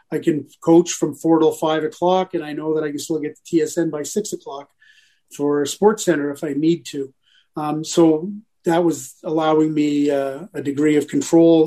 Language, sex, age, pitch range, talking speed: English, male, 40-59, 150-175 Hz, 200 wpm